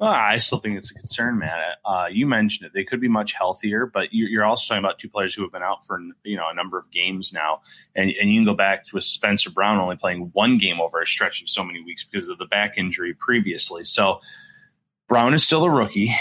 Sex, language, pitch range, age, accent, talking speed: male, English, 95-120 Hz, 30-49, American, 255 wpm